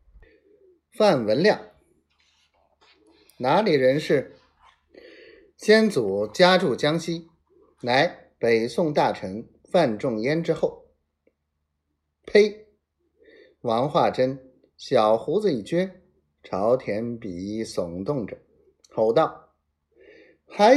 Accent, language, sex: native, Chinese, male